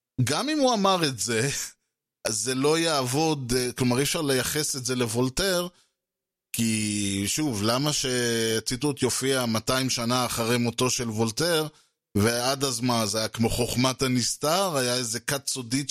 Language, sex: Hebrew, male